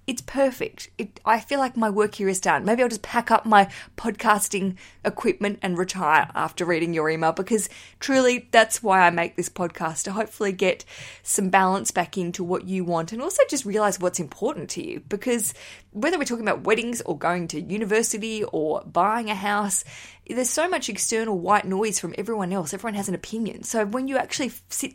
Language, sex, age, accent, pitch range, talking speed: English, female, 20-39, Australian, 180-225 Hz, 195 wpm